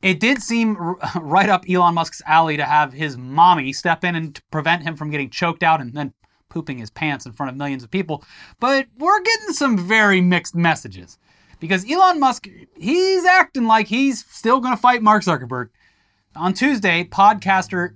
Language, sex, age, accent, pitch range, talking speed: English, male, 30-49, American, 145-200 Hz, 185 wpm